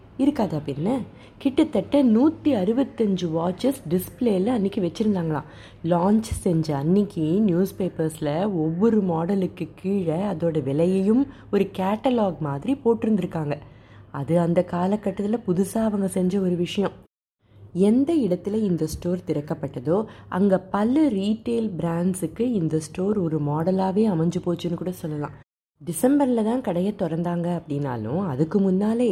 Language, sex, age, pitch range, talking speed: Tamil, female, 20-39, 155-210 Hz, 115 wpm